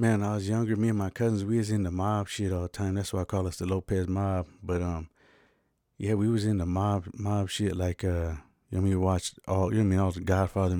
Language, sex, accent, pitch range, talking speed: English, male, American, 90-105 Hz, 290 wpm